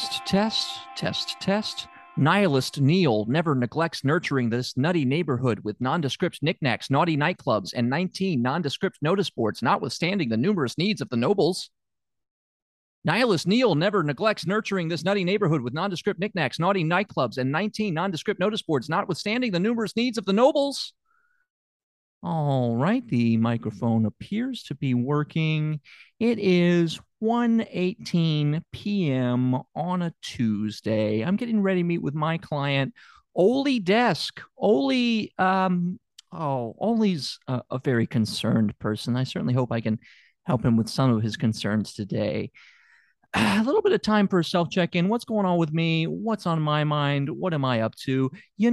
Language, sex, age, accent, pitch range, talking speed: English, male, 40-59, American, 130-205 Hz, 155 wpm